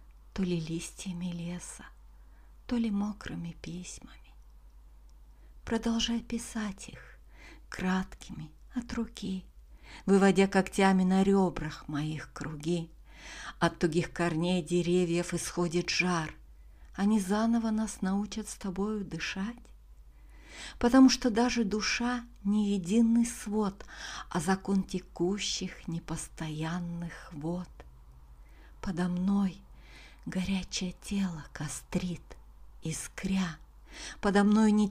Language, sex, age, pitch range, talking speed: Russian, female, 50-69, 165-210 Hz, 95 wpm